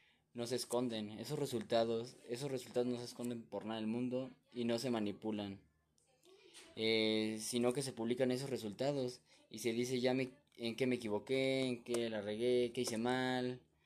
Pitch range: 100-125 Hz